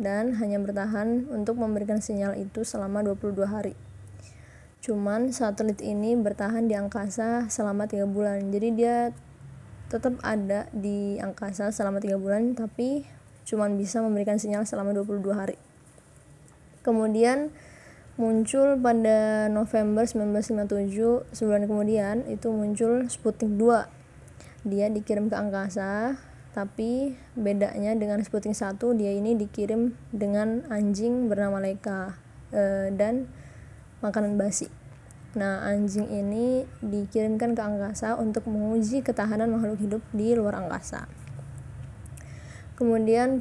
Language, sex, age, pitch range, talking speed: Indonesian, female, 20-39, 200-225 Hz, 115 wpm